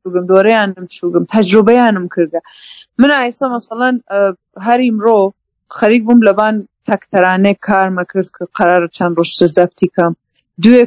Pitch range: 185-240 Hz